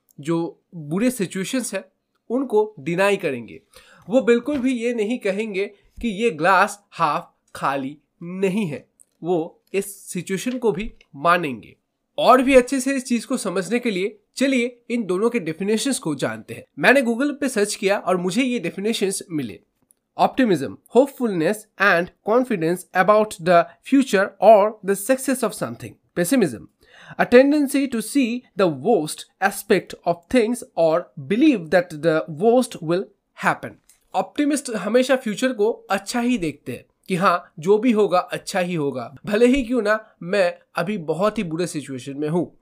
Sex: male